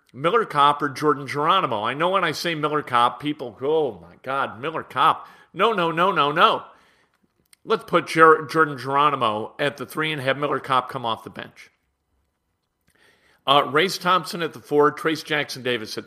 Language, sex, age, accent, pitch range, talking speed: English, male, 50-69, American, 125-165 Hz, 185 wpm